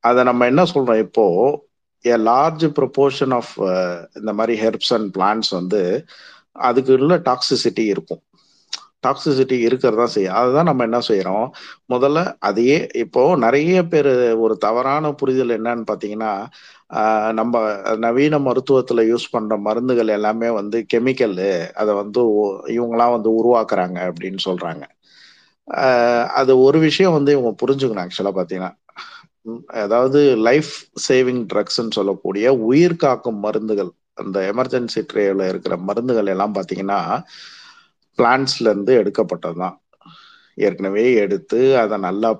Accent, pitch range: native, 110-135 Hz